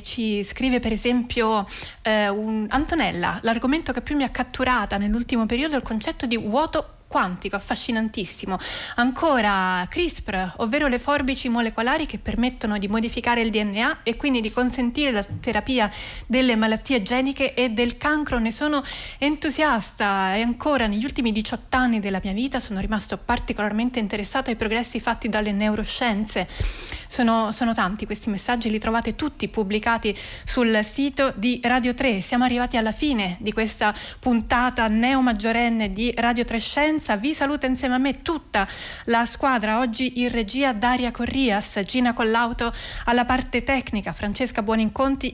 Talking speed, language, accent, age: 150 wpm, Italian, native, 30-49